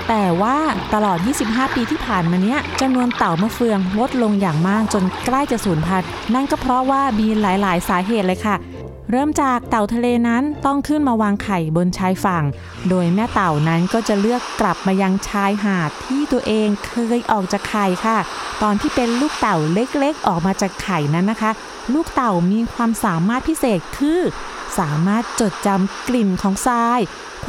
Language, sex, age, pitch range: Thai, female, 20-39, 190-255 Hz